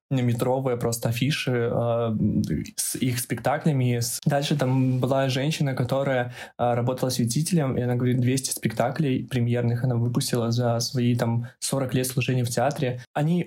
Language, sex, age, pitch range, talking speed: Russian, male, 20-39, 125-150 Hz, 145 wpm